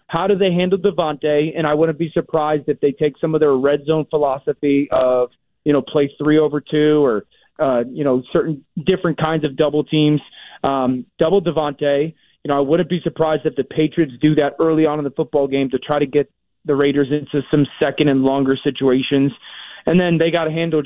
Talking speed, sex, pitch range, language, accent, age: 215 wpm, male, 140-165 Hz, English, American, 30-49